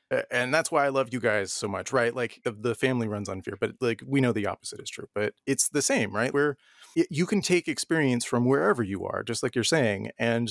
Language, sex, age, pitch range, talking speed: English, male, 30-49, 105-130 Hz, 250 wpm